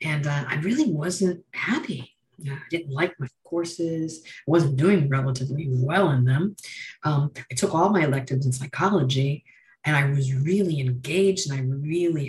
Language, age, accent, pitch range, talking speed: English, 50-69, American, 135-175 Hz, 165 wpm